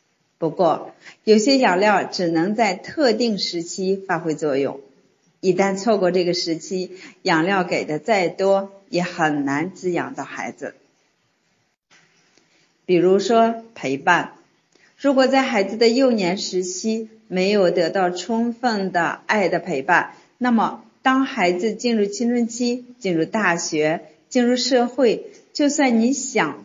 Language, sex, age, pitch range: Chinese, female, 50-69, 165-225 Hz